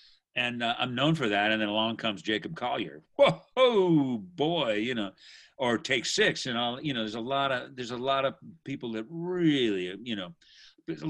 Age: 50-69